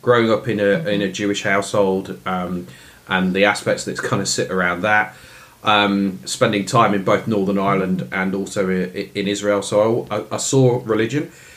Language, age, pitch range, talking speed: English, 30-49, 105-140 Hz, 180 wpm